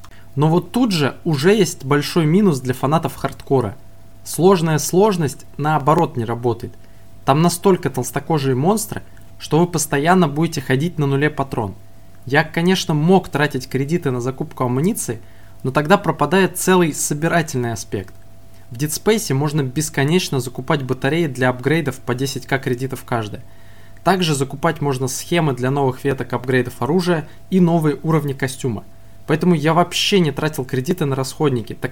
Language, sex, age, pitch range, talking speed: Russian, male, 20-39, 125-165 Hz, 145 wpm